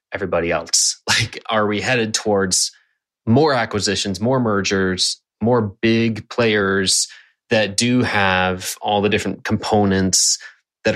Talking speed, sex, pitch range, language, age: 120 wpm, male, 95-115 Hz, English, 30-49